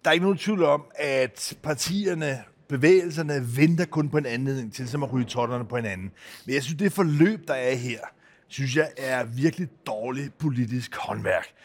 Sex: male